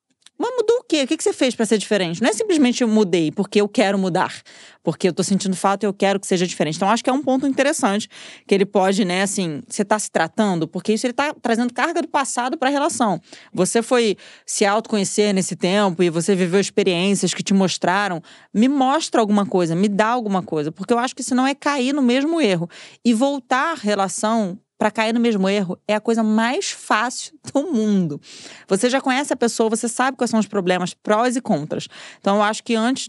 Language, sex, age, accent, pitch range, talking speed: Portuguese, female, 20-39, Brazilian, 190-250 Hz, 225 wpm